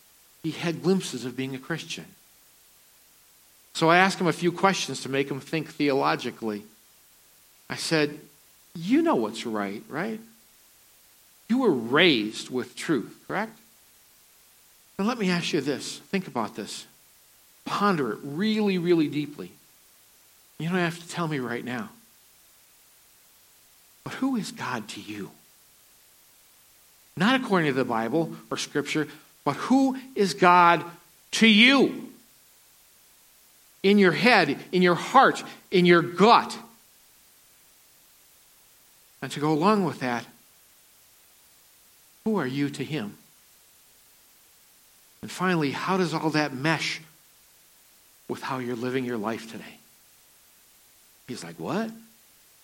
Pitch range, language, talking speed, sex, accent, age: 135-200 Hz, English, 125 wpm, male, American, 50-69